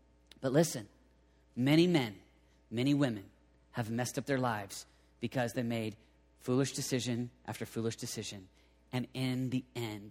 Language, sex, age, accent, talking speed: English, male, 30-49, American, 135 wpm